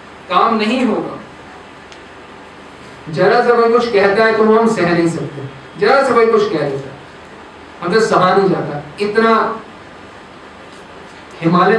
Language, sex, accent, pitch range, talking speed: Hindi, male, native, 175-225 Hz, 115 wpm